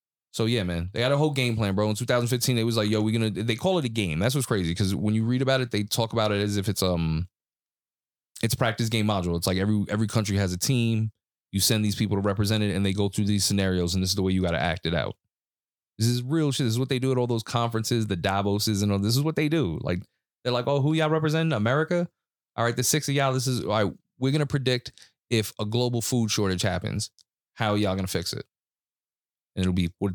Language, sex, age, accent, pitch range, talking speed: English, male, 20-39, American, 100-125 Hz, 275 wpm